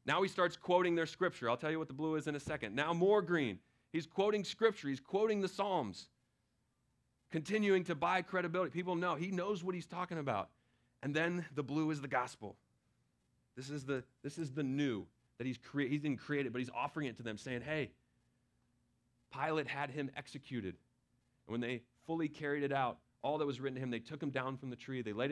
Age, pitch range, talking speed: 30-49, 115-150 Hz, 215 wpm